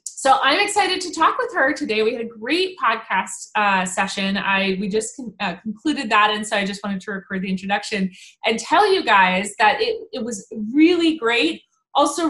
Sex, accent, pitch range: female, American, 200-285 Hz